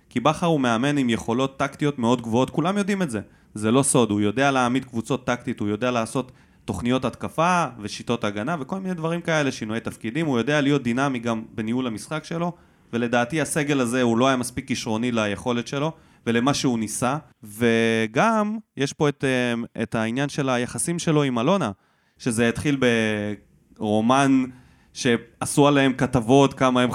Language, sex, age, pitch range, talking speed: Hebrew, male, 20-39, 115-145 Hz, 165 wpm